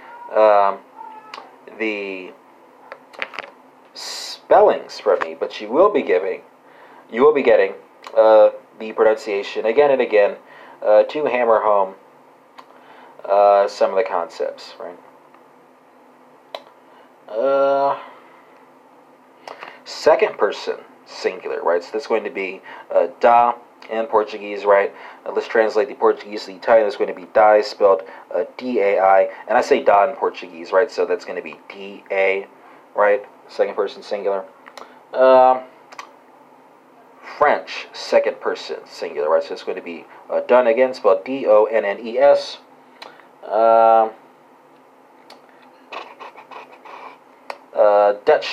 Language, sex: English, male